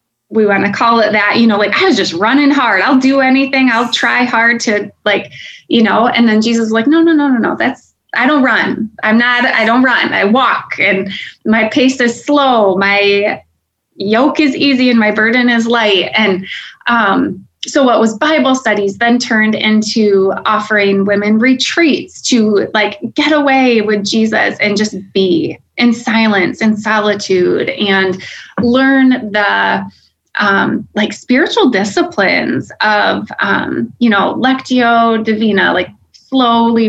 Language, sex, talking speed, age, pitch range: English, female, 165 wpm, 20-39, 210-265 Hz